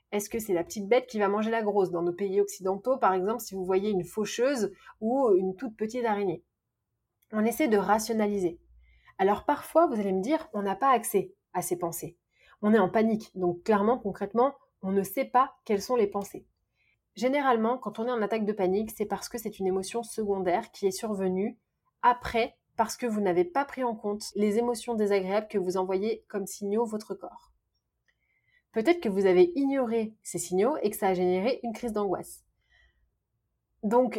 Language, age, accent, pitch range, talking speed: French, 30-49, French, 195-245 Hz, 195 wpm